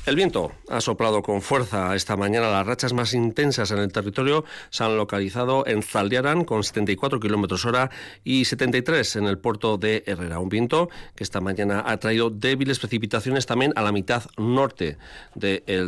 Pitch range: 100-130 Hz